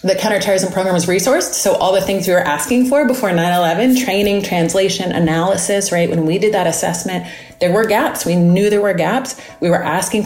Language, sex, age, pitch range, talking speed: English, female, 30-49, 165-220 Hz, 205 wpm